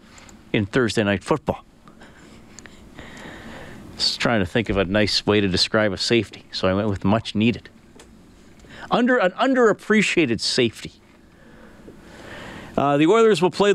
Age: 40-59